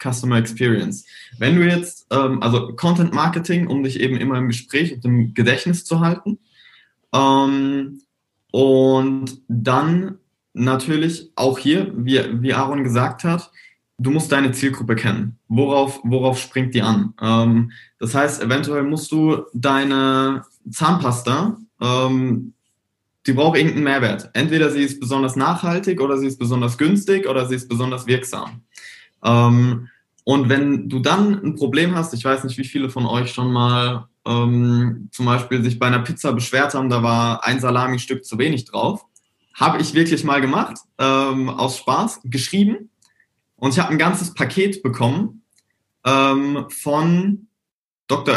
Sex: male